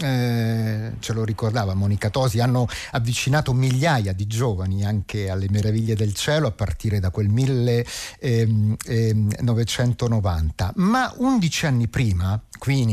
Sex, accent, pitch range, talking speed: male, native, 110-145 Hz, 135 wpm